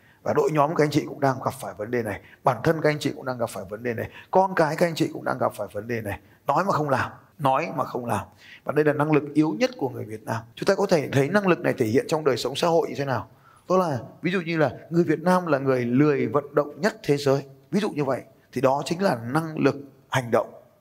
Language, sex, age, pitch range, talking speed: Vietnamese, male, 20-39, 130-170 Hz, 295 wpm